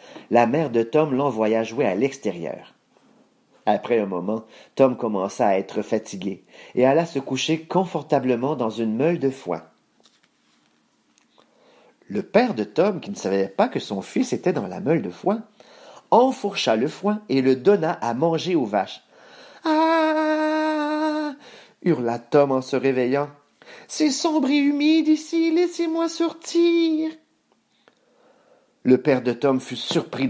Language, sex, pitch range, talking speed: English, male, 120-205 Hz, 145 wpm